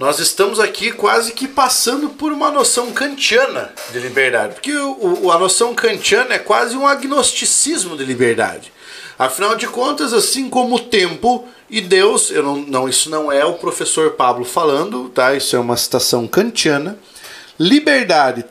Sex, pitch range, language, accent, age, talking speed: male, 180-280 Hz, Portuguese, Brazilian, 40-59, 160 wpm